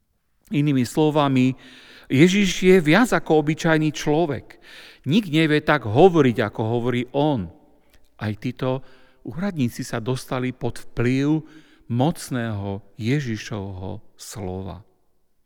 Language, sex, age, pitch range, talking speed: Slovak, male, 50-69, 120-160 Hz, 95 wpm